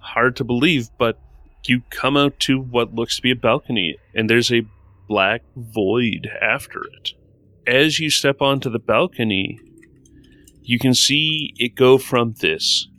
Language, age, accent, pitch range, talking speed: English, 30-49, American, 105-130 Hz, 155 wpm